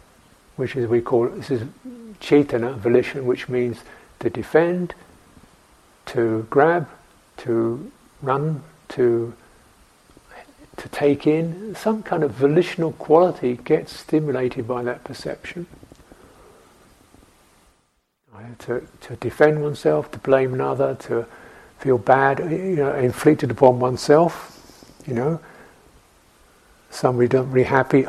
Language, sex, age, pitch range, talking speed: English, male, 60-79, 120-155 Hz, 115 wpm